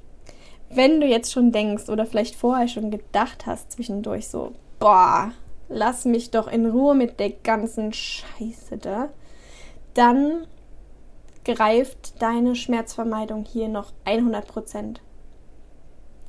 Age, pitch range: 10-29, 220-255 Hz